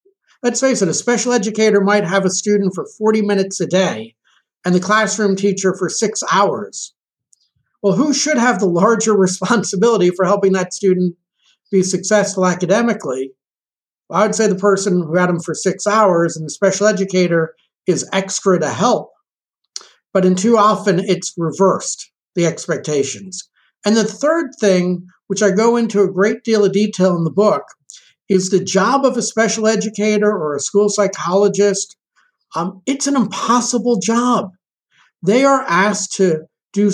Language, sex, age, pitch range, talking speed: English, male, 60-79, 185-215 Hz, 160 wpm